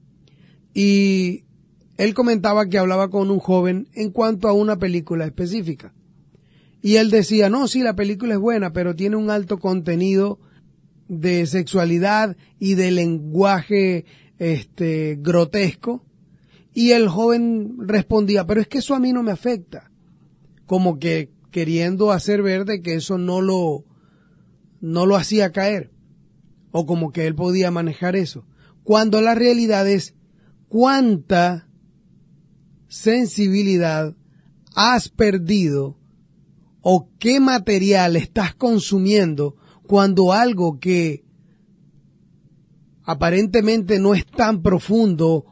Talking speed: 120 wpm